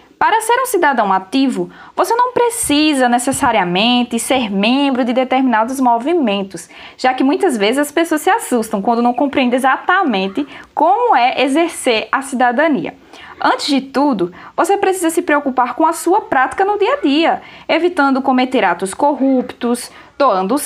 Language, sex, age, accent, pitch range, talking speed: Portuguese, female, 10-29, Brazilian, 245-345 Hz, 150 wpm